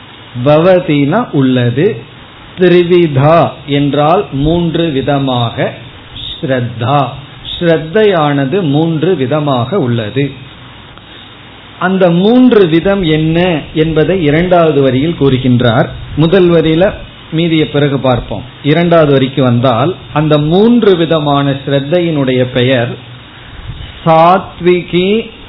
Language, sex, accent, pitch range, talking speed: Tamil, male, native, 130-165 Hz, 75 wpm